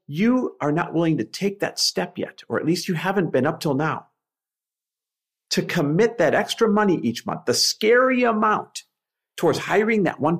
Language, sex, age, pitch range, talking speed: English, male, 50-69, 155-230 Hz, 185 wpm